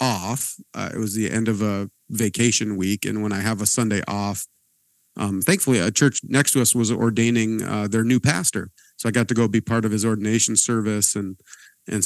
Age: 40-59